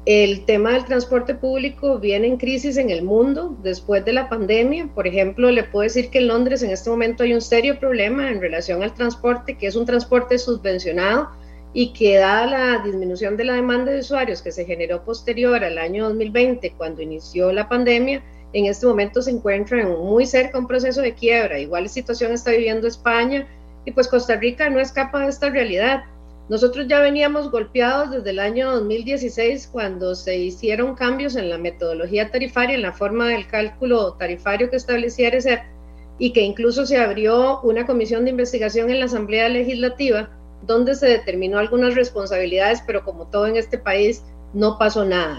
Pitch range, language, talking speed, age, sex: 200-250 Hz, Spanish, 180 wpm, 30-49, female